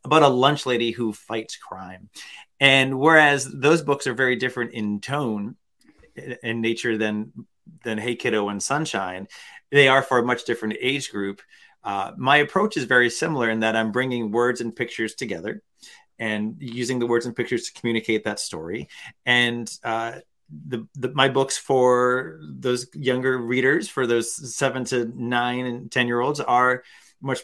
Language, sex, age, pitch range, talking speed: English, male, 30-49, 115-145 Hz, 170 wpm